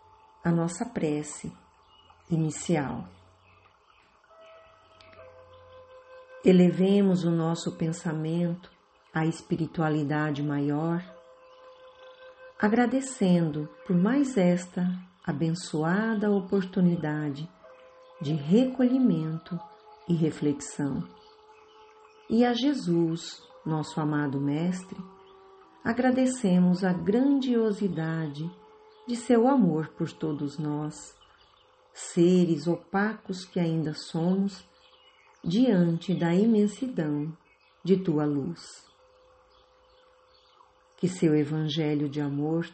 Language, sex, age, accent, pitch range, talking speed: Portuguese, female, 50-69, Brazilian, 155-215 Hz, 75 wpm